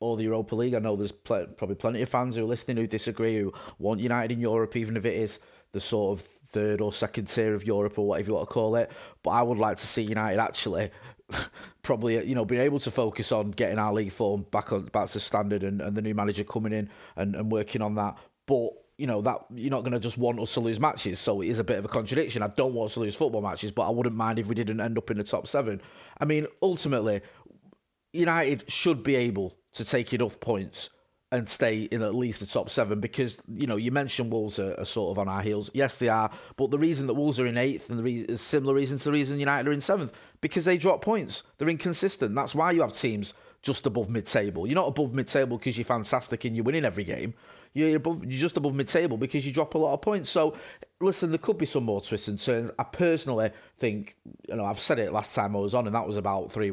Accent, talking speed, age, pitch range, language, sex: British, 255 wpm, 30-49, 110-140 Hz, English, male